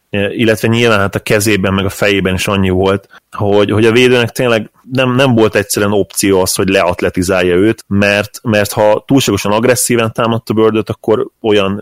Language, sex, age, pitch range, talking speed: Hungarian, male, 20-39, 95-105 Hz, 175 wpm